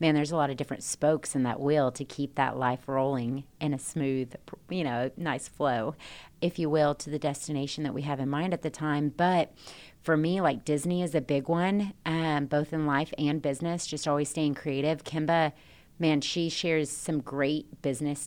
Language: English